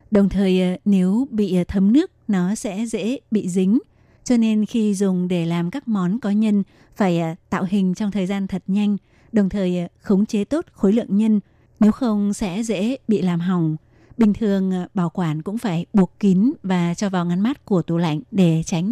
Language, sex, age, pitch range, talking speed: Vietnamese, female, 20-39, 180-215 Hz, 195 wpm